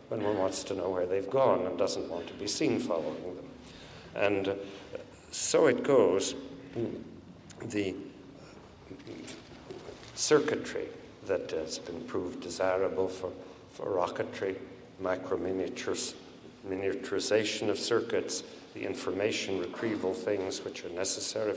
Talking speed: 115 wpm